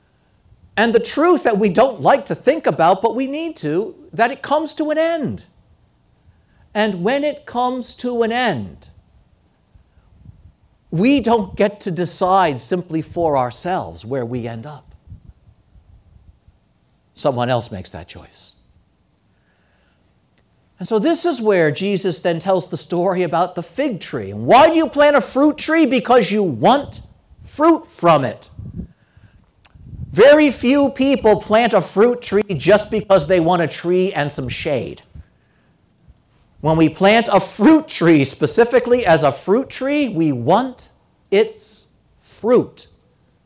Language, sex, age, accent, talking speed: English, male, 50-69, American, 140 wpm